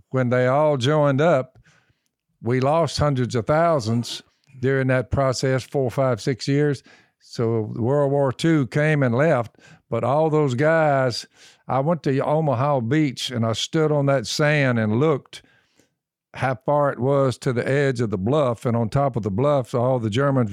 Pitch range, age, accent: 120-145 Hz, 50-69, American